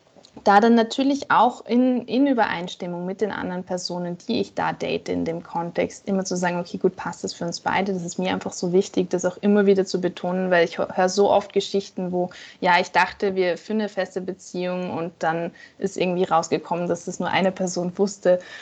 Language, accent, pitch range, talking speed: German, German, 180-220 Hz, 215 wpm